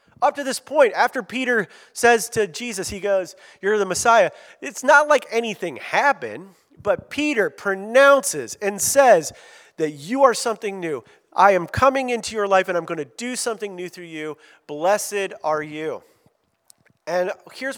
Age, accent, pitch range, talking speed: 40-59, American, 175-250 Hz, 165 wpm